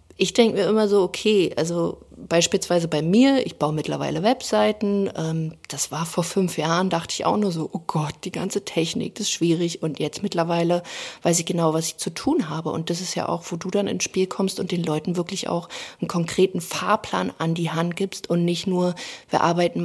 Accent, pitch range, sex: German, 175-215 Hz, female